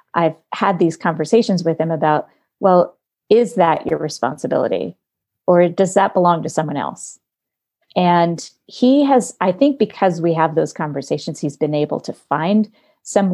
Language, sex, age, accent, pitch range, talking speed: English, female, 30-49, American, 160-225 Hz, 155 wpm